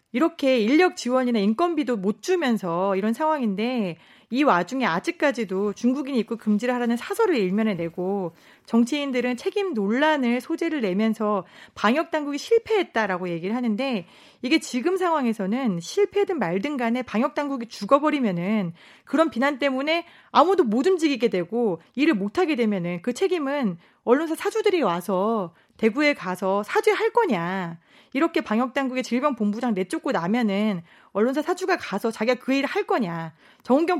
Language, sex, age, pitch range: Korean, female, 30-49, 205-305 Hz